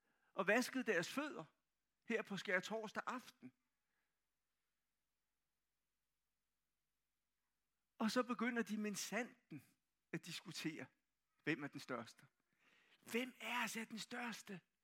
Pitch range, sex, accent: 195-250 Hz, male, native